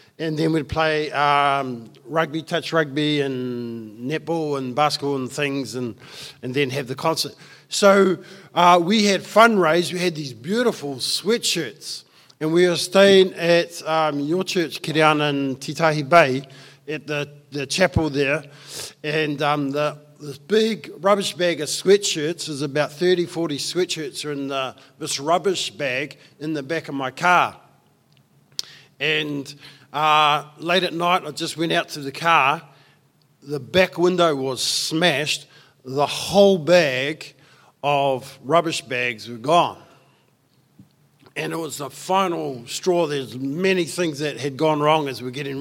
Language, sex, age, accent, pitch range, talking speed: English, male, 50-69, Australian, 140-165 Hz, 150 wpm